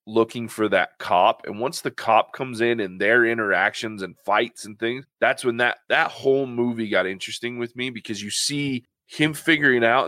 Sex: male